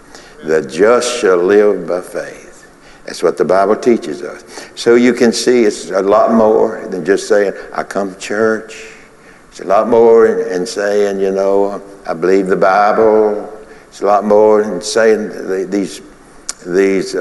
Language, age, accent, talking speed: English, 60-79, American, 165 wpm